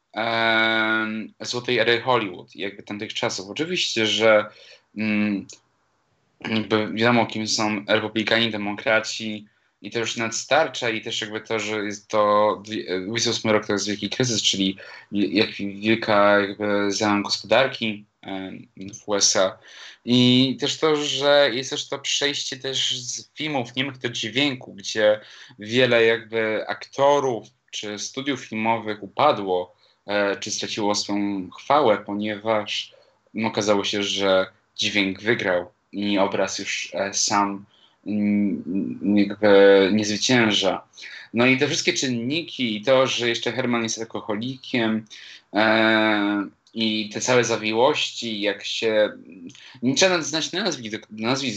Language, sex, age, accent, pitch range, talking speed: Polish, male, 20-39, native, 105-120 Hz, 120 wpm